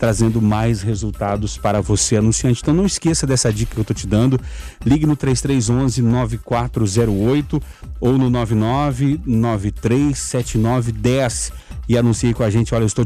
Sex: male